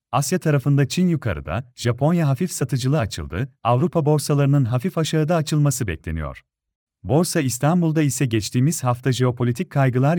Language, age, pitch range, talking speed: Turkish, 40-59, 120-155 Hz, 125 wpm